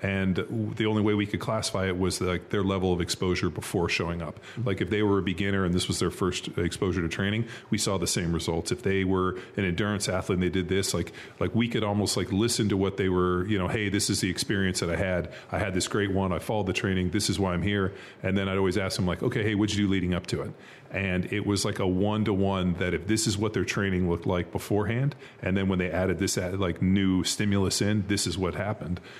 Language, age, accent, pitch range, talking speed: English, 30-49, American, 90-105 Hz, 260 wpm